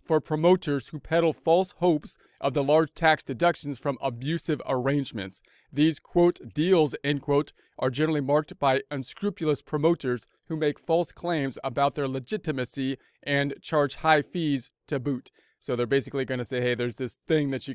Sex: male